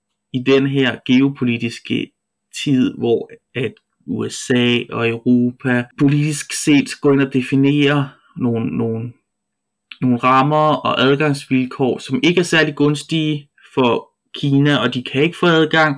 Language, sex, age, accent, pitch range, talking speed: Danish, male, 20-39, native, 125-145 Hz, 130 wpm